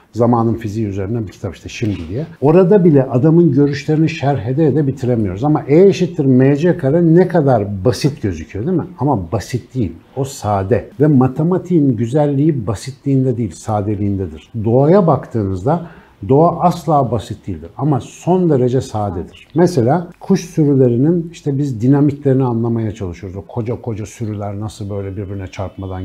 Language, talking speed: Turkish, 145 wpm